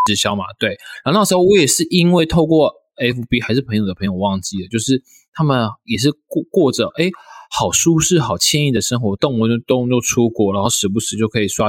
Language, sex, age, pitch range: Chinese, male, 20-39, 110-150 Hz